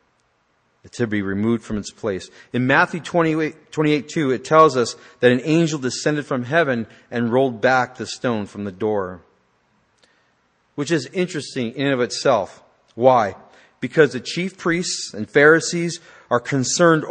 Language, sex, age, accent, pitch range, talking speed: English, male, 40-59, American, 110-150 Hz, 150 wpm